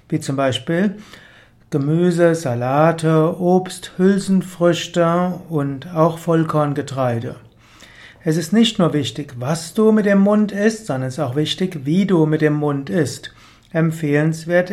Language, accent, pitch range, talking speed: German, German, 140-180 Hz, 135 wpm